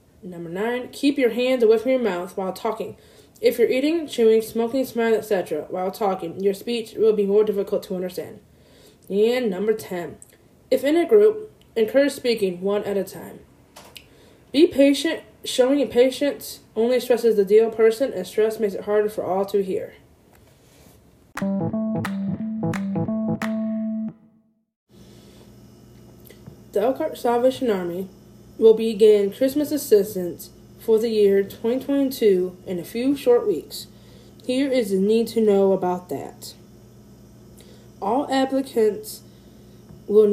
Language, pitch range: English, 200-255 Hz